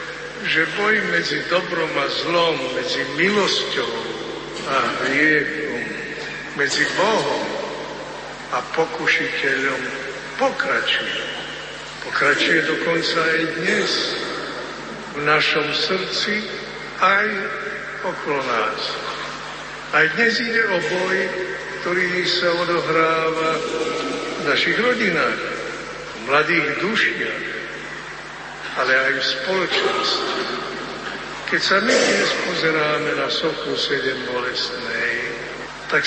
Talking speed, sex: 90 wpm, male